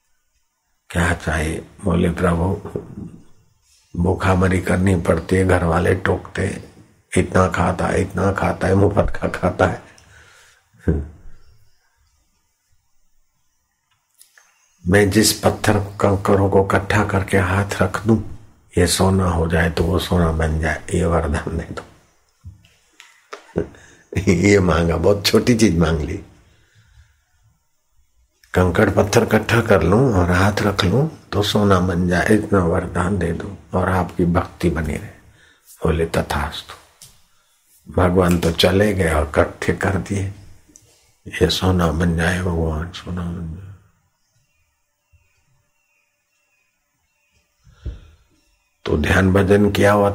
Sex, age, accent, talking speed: male, 50-69, native, 115 wpm